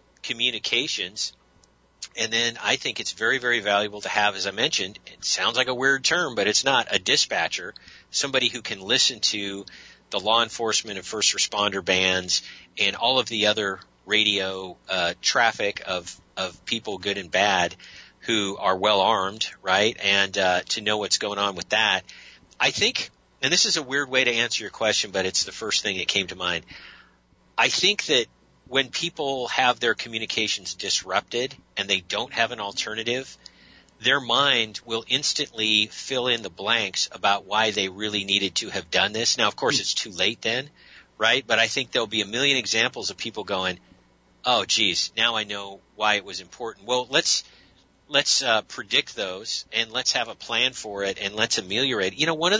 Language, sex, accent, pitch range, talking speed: English, male, American, 100-125 Hz, 190 wpm